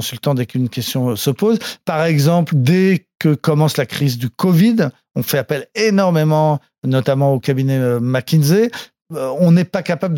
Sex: male